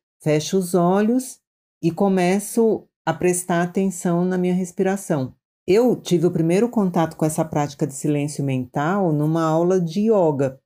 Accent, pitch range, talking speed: Brazilian, 155-195 Hz, 145 wpm